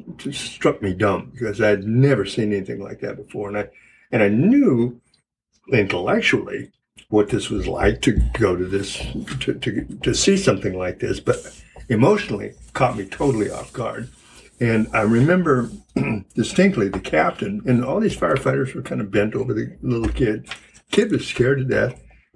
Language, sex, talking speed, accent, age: English, male, 170 wpm, American, 60-79